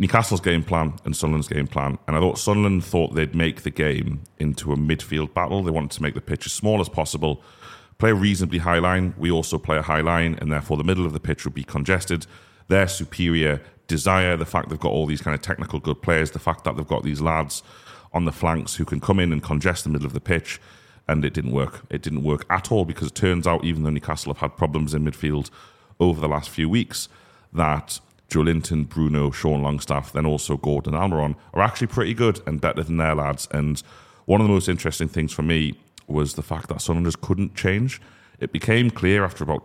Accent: British